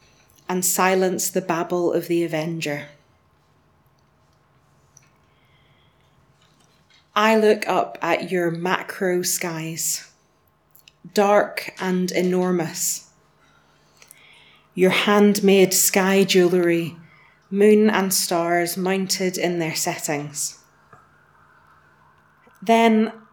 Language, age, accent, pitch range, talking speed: English, 30-49, British, 170-210 Hz, 75 wpm